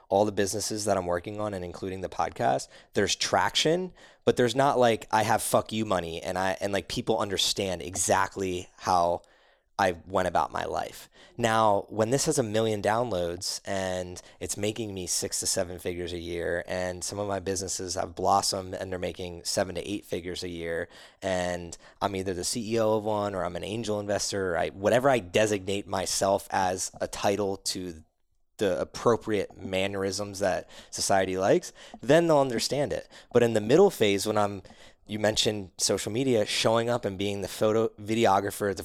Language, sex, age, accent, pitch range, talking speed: English, male, 20-39, American, 95-110 Hz, 180 wpm